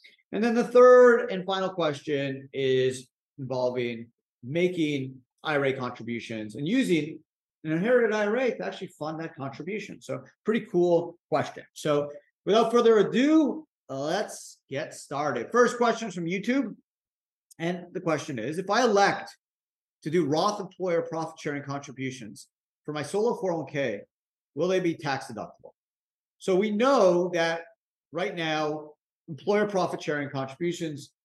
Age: 40-59